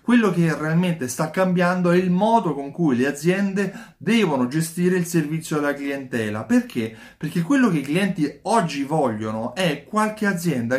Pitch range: 140-190 Hz